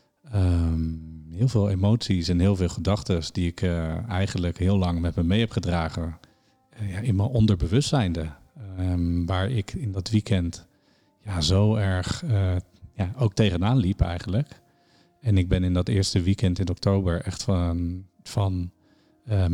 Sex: male